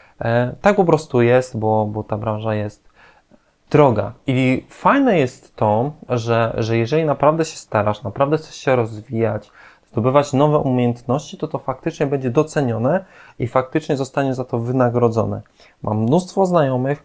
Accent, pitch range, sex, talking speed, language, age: native, 115-140 Hz, male, 145 wpm, Polish, 20-39